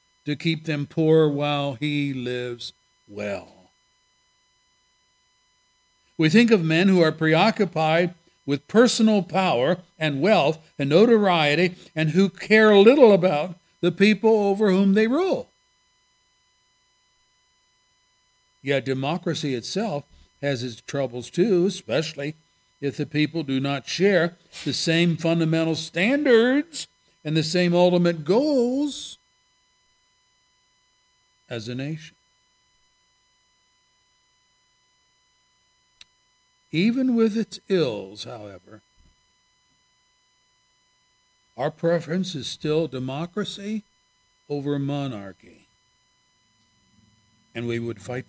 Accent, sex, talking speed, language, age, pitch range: American, male, 95 wpm, English, 60-79, 125-170 Hz